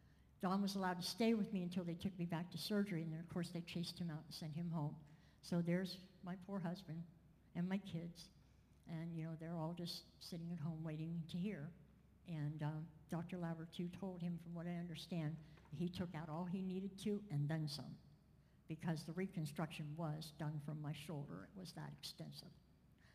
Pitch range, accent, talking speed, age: 160-190 Hz, American, 205 wpm, 60-79